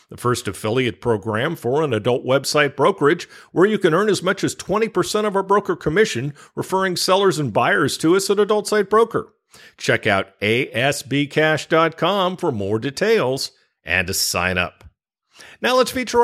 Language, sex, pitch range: English, male, 110-175 Hz